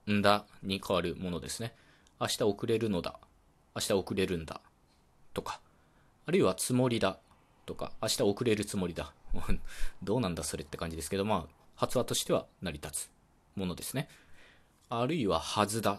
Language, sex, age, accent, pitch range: Japanese, male, 20-39, native, 85-120 Hz